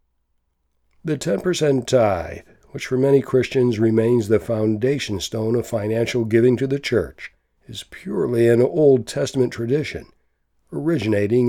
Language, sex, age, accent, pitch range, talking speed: English, male, 60-79, American, 105-130 Hz, 125 wpm